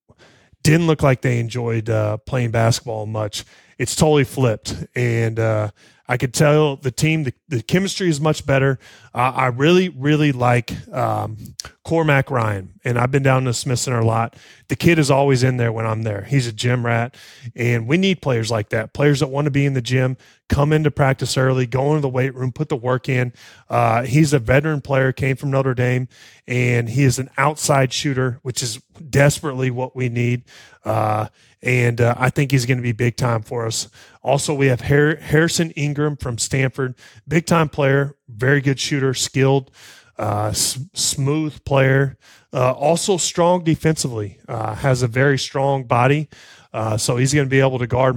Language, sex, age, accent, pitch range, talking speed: English, male, 20-39, American, 120-145 Hz, 190 wpm